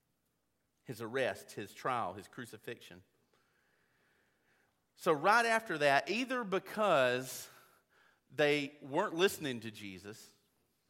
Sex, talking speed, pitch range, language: male, 95 wpm, 120-165 Hz, English